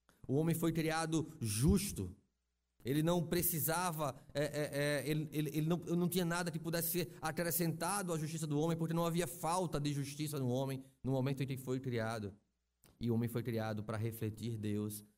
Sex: male